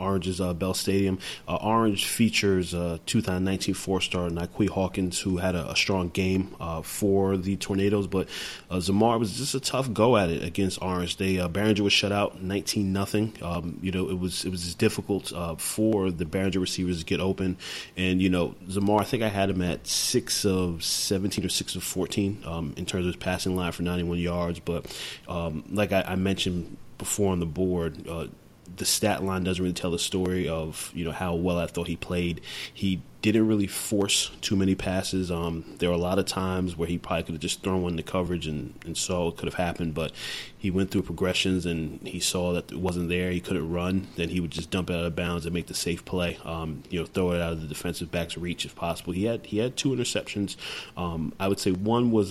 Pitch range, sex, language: 85-95 Hz, male, English